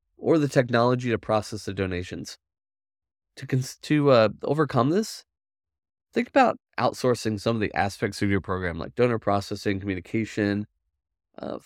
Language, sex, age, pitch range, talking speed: English, male, 20-39, 100-135 Hz, 140 wpm